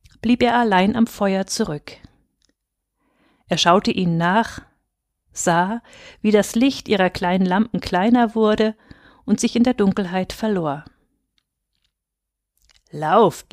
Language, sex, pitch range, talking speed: German, female, 175-235 Hz, 115 wpm